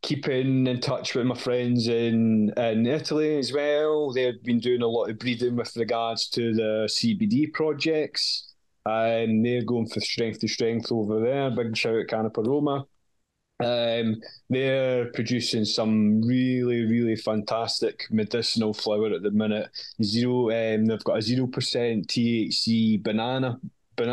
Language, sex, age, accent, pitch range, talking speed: English, male, 20-39, British, 110-125 Hz, 145 wpm